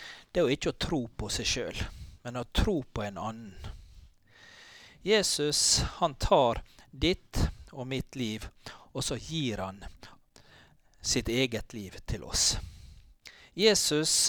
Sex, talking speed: male, 130 wpm